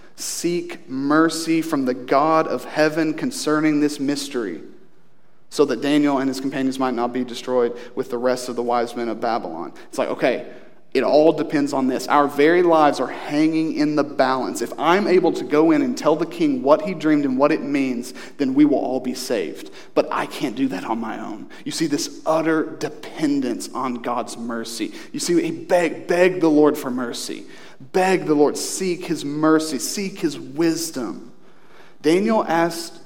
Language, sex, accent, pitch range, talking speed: English, male, American, 140-195 Hz, 185 wpm